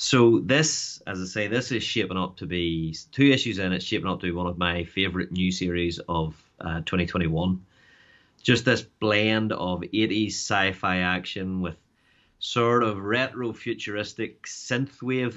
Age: 30-49